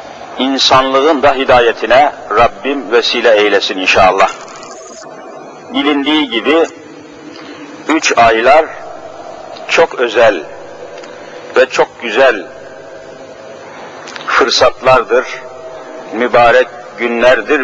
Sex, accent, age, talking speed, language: male, native, 60-79, 65 wpm, Turkish